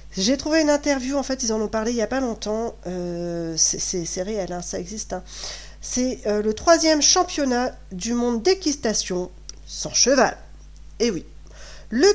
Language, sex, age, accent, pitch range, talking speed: French, female, 40-59, French, 185-265 Hz, 185 wpm